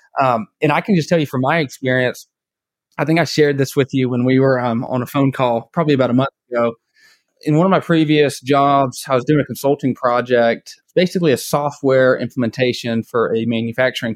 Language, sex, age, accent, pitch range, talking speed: English, male, 20-39, American, 125-160 Hz, 210 wpm